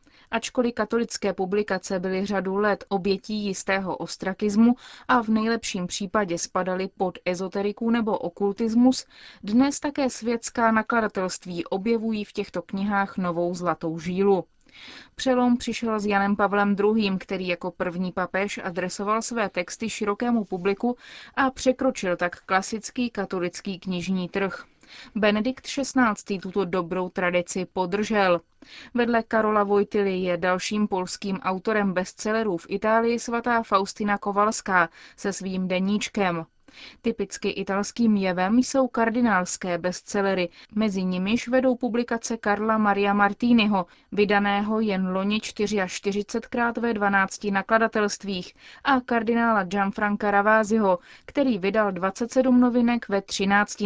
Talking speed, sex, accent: 115 wpm, female, native